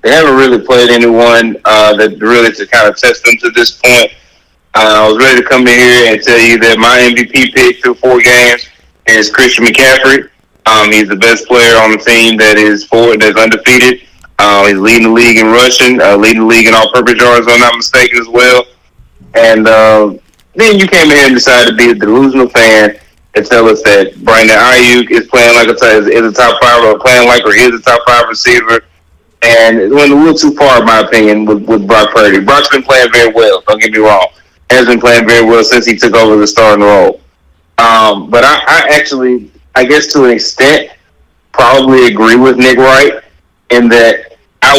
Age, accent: 20-39, American